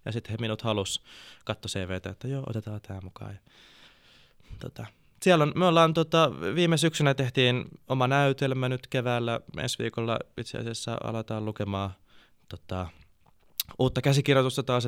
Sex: male